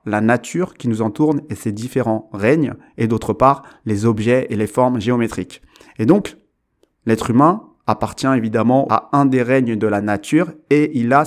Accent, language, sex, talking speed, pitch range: French, French, male, 180 wpm, 115-145 Hz